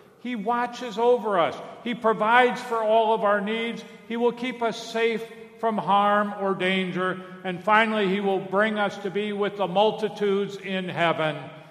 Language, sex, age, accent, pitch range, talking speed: English, male, 50-69, American, 160-220 Hz, 170 wpm